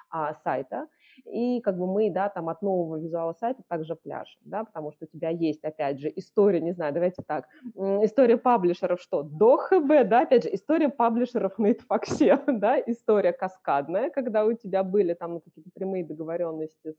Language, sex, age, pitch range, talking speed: Russian, female, 20-39, 160-230 Hz, 175 wpm